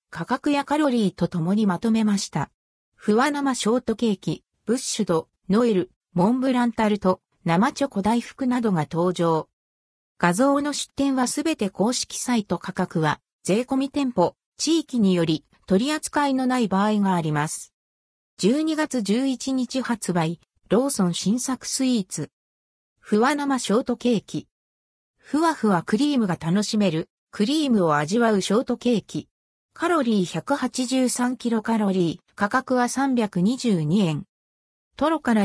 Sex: female